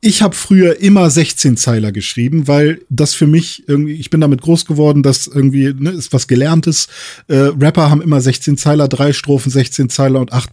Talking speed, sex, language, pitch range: 195 wpm, male, German, 130-150 Hz